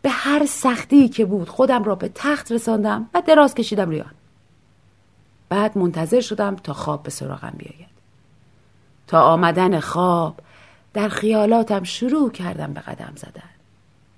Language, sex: Persian, female